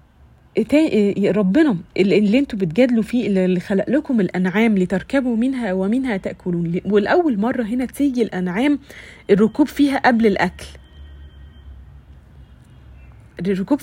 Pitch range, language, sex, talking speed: 180-250 Hz, Arabic, female, 105 wpm